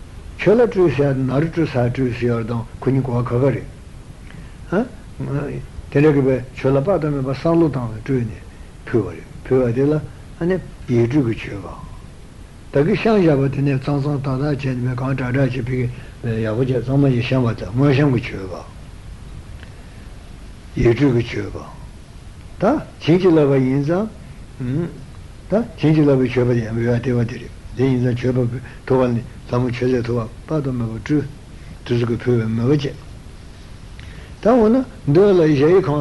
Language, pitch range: Italian, 115-145 Hz